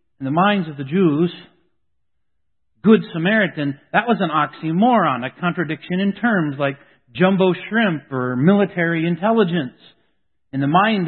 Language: English